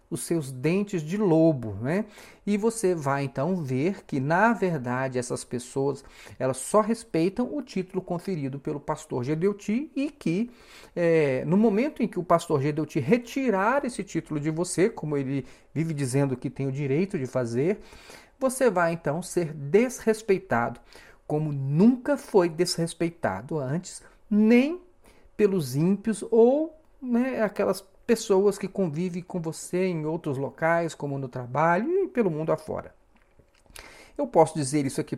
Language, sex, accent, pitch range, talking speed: Portuguese, male, Brazilian, 135-205 Hz, 145 wpm